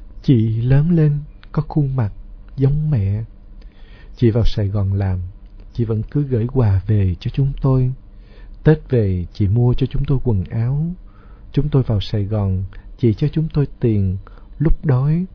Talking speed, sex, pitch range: 170 wpm, male, 100-135 Hz